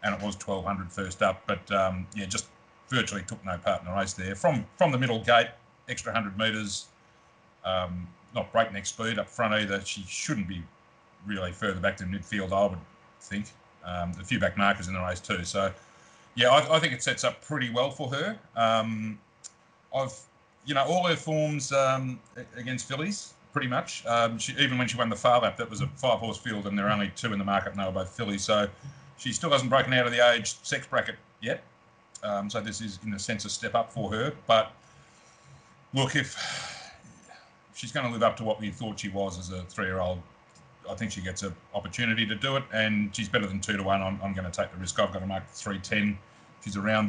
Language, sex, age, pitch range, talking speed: English, male, 30-49, 95-115 Hz, 225 wpm